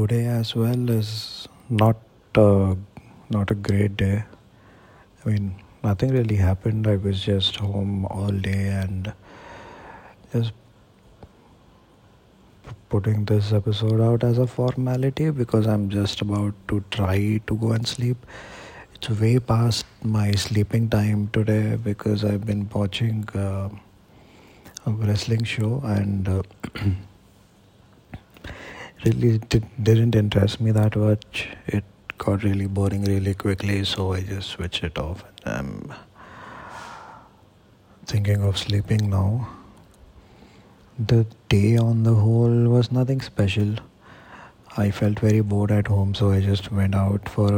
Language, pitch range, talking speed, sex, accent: English, 100-115 Hz, 125 wpm, male, Indian